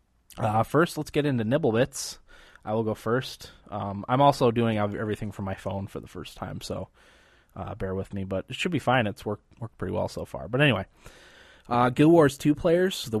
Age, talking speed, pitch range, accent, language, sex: 20-39, 215 wpm, 100-120 Hz, American, English, male